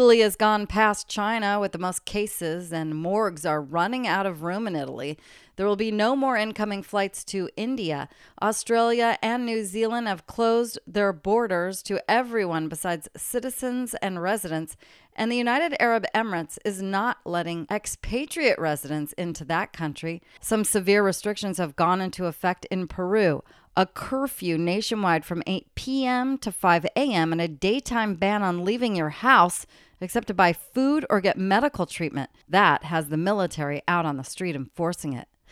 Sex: female